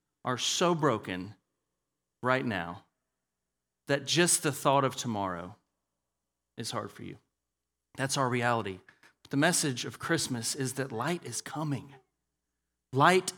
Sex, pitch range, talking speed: male, 130-185 Hz, 125 wpm